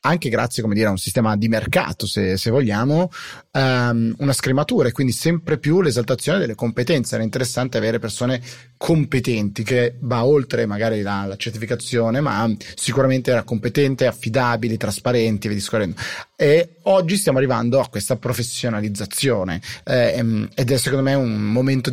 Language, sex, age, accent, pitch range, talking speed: Italian, male, 30-49, native, 105-130 Hz, 150 wpm